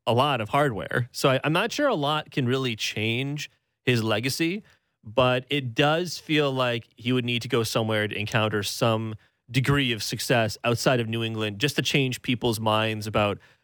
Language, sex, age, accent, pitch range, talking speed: English, male, 30-49, American, 110-145 Hz, 190 wpm